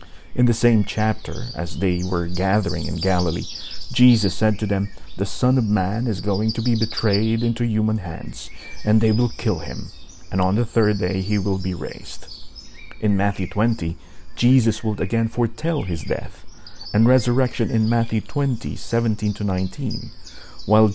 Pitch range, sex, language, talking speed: 95-120 Hz, male, English, 165 wpm